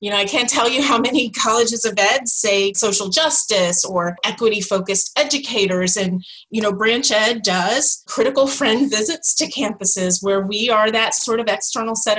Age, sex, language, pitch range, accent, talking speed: 30-49, female, English, 195-245 Hz, American, 180 wpm